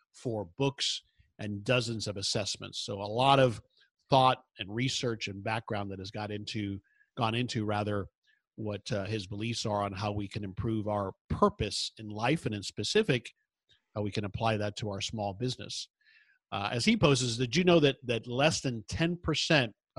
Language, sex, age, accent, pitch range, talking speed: English, male, 50-69, American, 110-140 Hz, 180 wpm